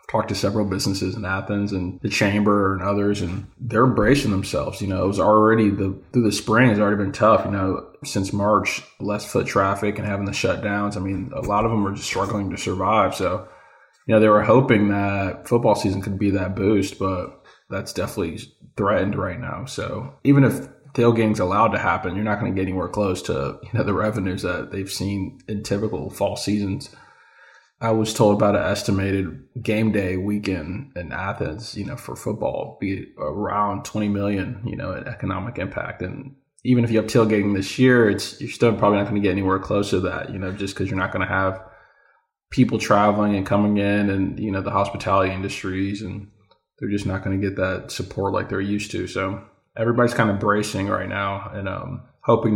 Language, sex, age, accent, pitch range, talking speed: English, male, 20-39, American, 95-110 Hz, 210 wpm